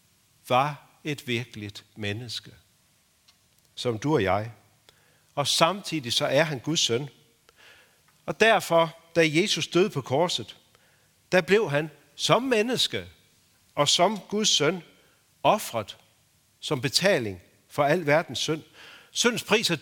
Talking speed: 125 wpm